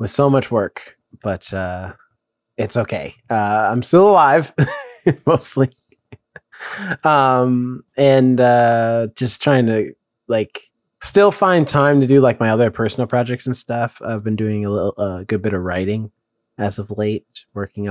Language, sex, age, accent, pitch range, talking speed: English, male, 20-39, American, 110-150 Hz, 155 wpm